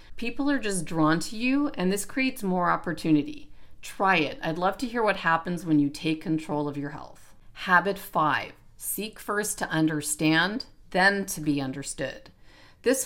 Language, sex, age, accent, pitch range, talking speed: English, female, 40-59, American, 155-195 Hz, 170 wpm